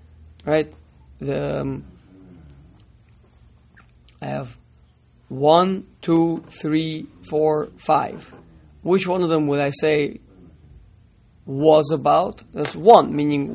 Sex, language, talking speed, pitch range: male, English, 95 wpm, 130-165 Hz